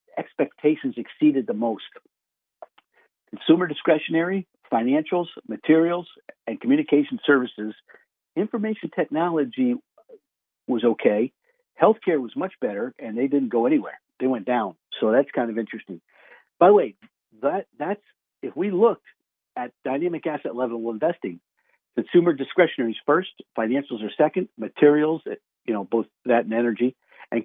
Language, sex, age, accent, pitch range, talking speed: English, male, 50-69, American, 115-175 Hz, 135 wpm